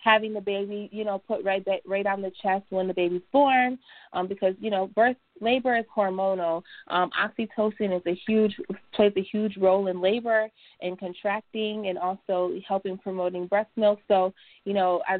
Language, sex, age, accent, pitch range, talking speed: English, female, 20-39, American, 185-215 Hz, 180 wpm